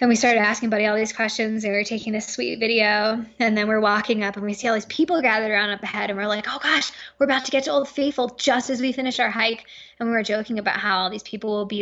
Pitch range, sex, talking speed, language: 210-275 Hz, female, 300 wpm, English